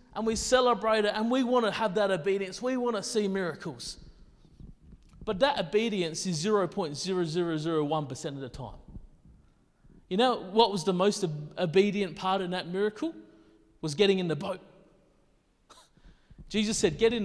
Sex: male